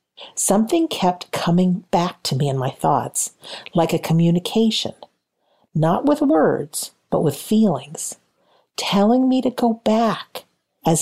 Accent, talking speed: American, 130 wpm